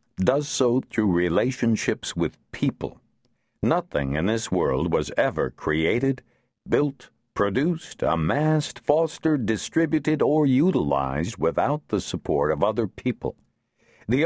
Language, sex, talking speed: English, male, 115 wpm